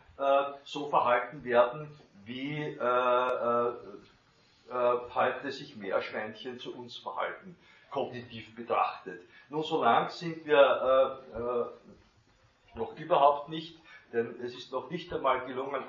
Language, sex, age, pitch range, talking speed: German, male, 50-69, 120-145 Hz, 120 wpm